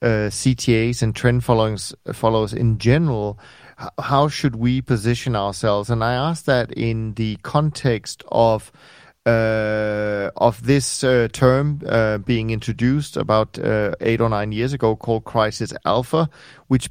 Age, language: 40-59, English